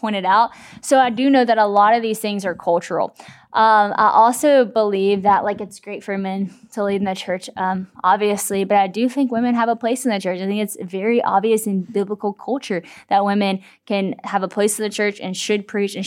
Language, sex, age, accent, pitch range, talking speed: English, female, 10-29, American, 200-250 Hz, 235 wpm